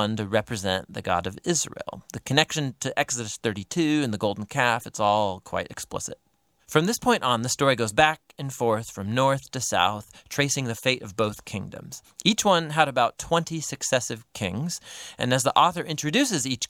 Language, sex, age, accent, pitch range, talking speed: English, male, 30-49, American, 115-155 Hz, 185 wpm